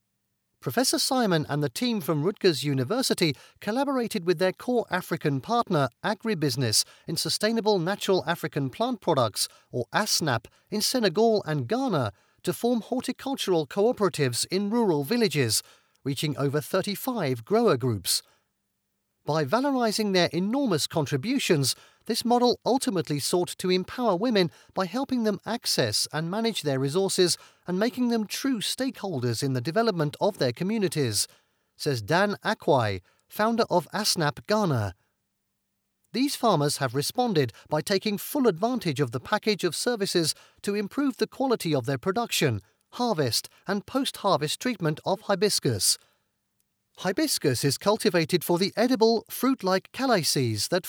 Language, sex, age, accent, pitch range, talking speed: English, male, 40-59, British, 145-225 Hz, 130 wpm